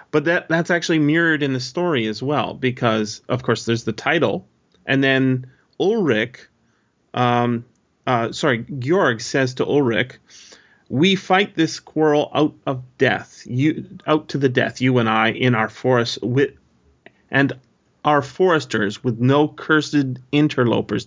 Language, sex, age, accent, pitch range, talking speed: English, male, 30-49, American, 115-150 Hz, 150 wpm